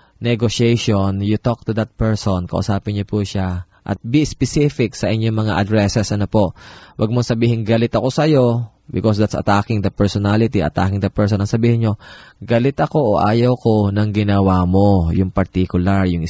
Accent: native